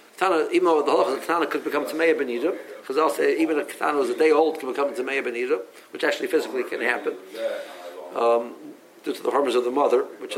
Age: 50-69